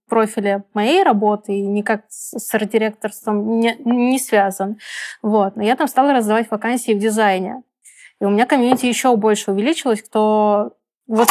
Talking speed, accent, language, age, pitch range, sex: 145 wpm, native, Russian, 20-39, 205-235 Hz, female